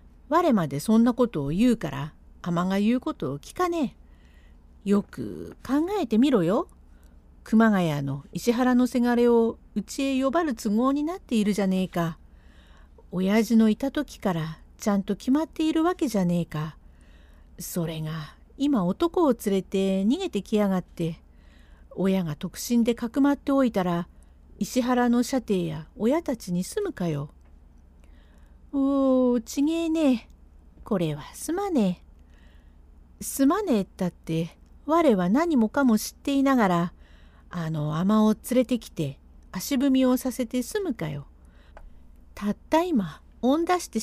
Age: 50-69